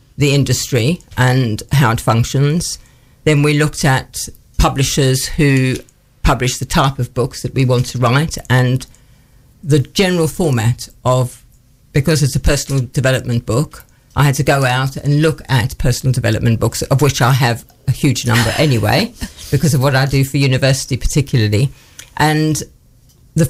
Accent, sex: British, female